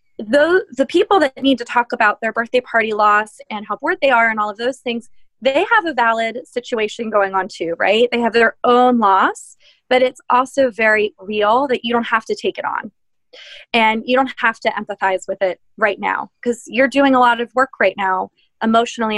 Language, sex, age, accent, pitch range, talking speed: English, female, 20-39, American, 210-255 Hz, 215 wpm